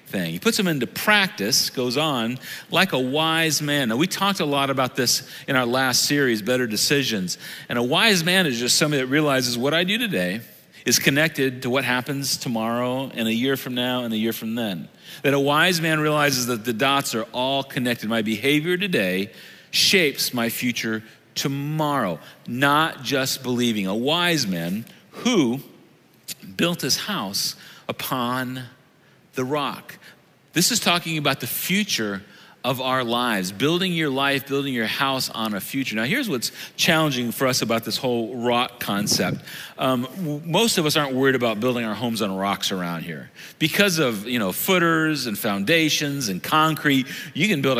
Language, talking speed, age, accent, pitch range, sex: English, 175 wpm, 40-59, American, 125-160 Hz, male